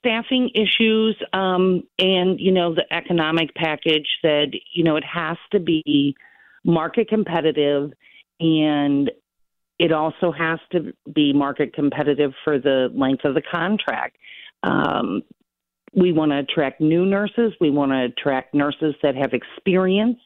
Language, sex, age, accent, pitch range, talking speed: English, female, 50-69, American, 145-185 Hz, 140 wpm